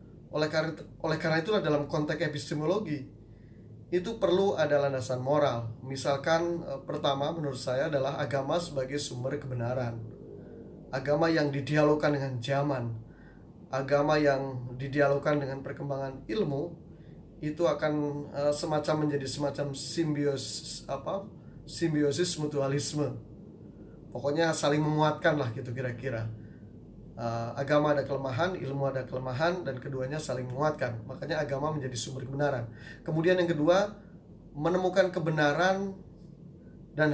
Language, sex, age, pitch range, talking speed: Indonesian, male, 20-39, 135-170 Hz, 110 wpm